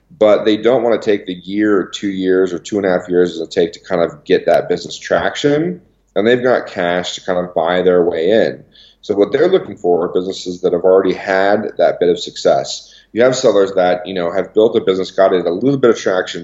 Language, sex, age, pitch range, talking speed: English, male, 40-59, 90-110 Hz, 250 wpm